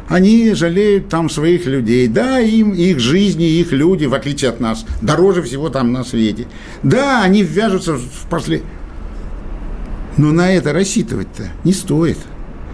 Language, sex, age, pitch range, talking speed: Russian, male, 50-69, 105-175 Hz, 150 wpm